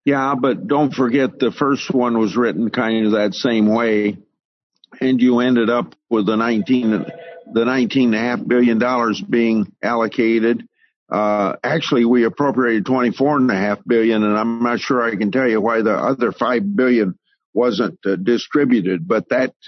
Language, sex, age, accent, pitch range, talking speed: English, male, 50-69, American, 110-140 Hz, 175 wpm